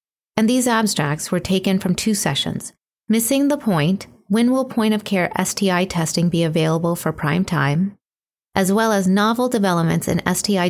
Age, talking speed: 30-49, 155 wpm